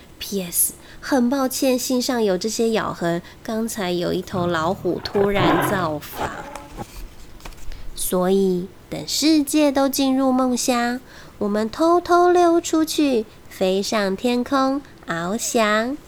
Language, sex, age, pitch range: Chinese, female, 20-39, 220-295 Hz